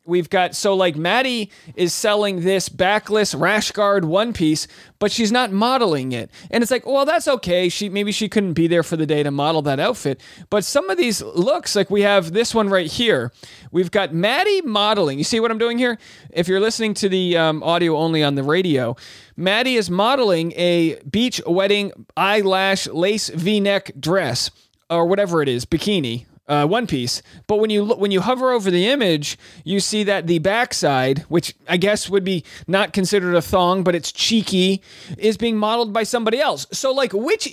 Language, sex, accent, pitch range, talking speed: English, male, American, 170-225 Hz, 195 wpm